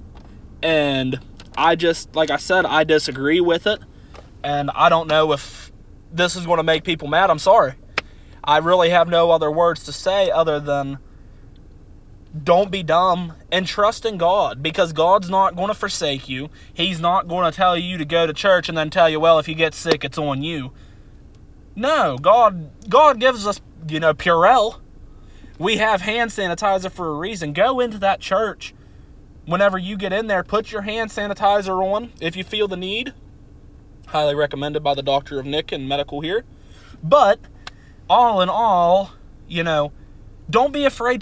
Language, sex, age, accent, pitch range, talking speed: English, male, 20-39, American, 150-200 Hz, 180 wpm